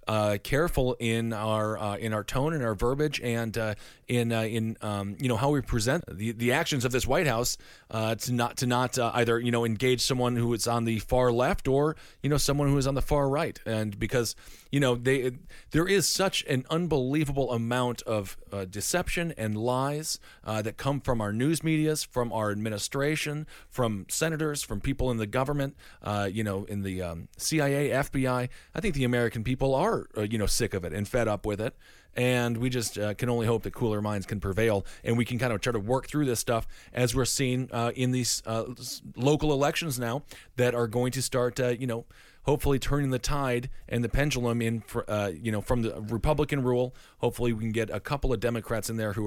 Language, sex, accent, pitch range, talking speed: English, male, American, 110-135 Hz, 220 wpm